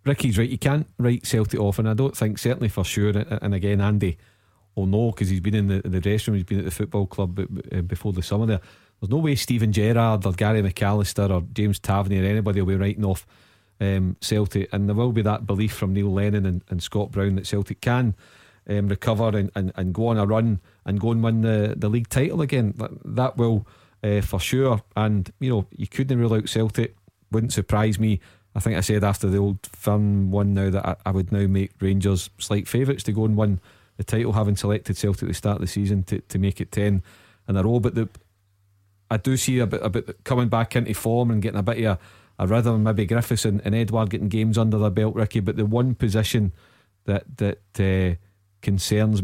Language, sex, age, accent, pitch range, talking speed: English, male, 40-59, British, 100-110 Hz, 230 wpm